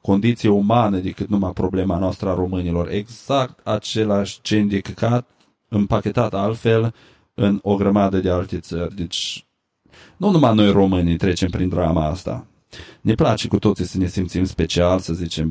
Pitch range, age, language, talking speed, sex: 90-105 Hz, 30-49, Romanian, 150 wpm, male